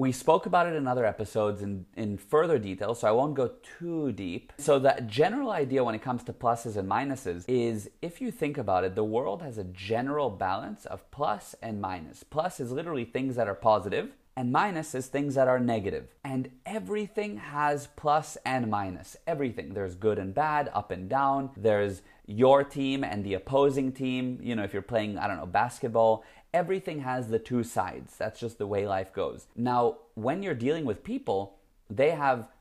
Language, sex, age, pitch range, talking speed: English, male, 30-49, 105-145 Hz, 195 wpm